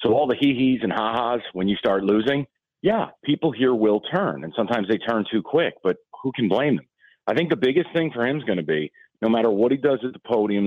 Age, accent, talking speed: 40-59, American, 260 wpm